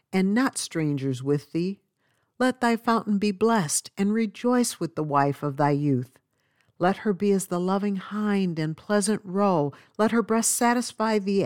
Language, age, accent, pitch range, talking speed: English, 50-69, American, 145-205 Hz, 175 wpm